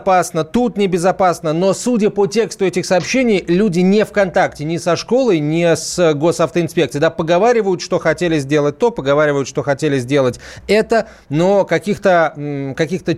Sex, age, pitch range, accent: male, 30-49, 150-195 Hz, native